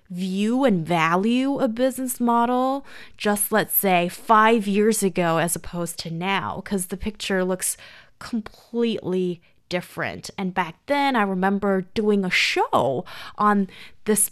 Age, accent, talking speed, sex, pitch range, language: 20-39, American, 135 wpm, female, 180-220 Hz, English